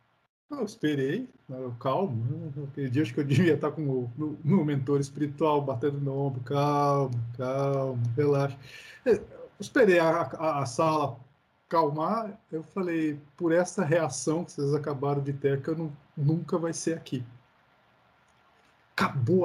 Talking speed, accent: 140 wpm, Brazilian